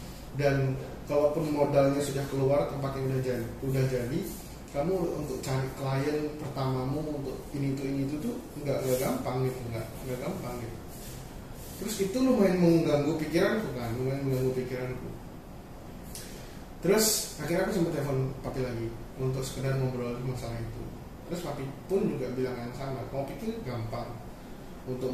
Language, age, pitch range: Indonesian, 20-39, 125-160 Hz